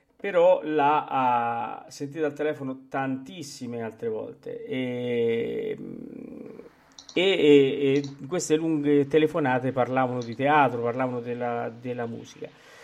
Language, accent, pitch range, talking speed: Italian, native, 120-155 Hz, 100 wpm